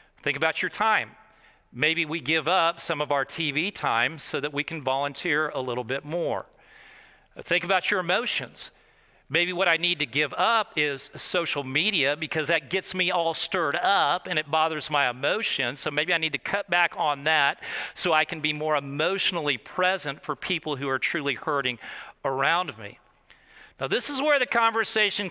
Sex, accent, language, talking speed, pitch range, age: male, American, English, 185 wpm, 150-200 Hz, 40-59